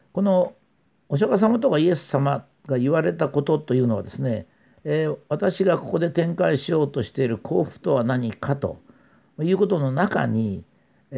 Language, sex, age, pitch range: Japanese, male, 50-69, 120-175 Hz